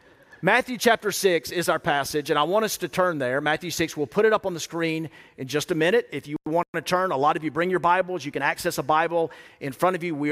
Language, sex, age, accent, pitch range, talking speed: English, male, 40-59, American, 150-185 Hz, 280 wpm